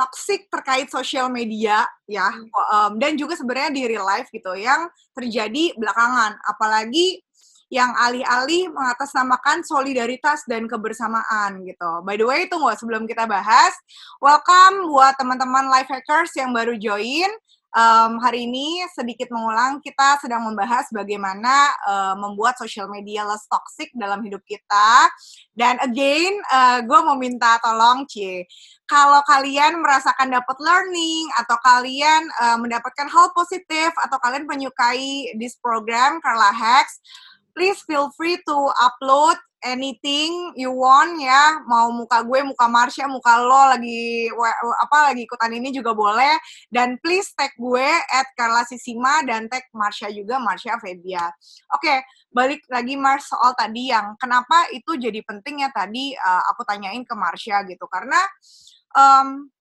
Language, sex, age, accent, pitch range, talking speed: Indonesian, female, 20-39, native, 230-290 Hz, 140 wpm